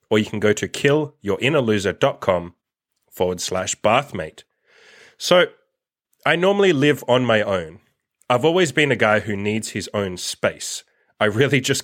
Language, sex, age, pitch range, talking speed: English, male, 30-49, 105-135 Hz, 145 wpm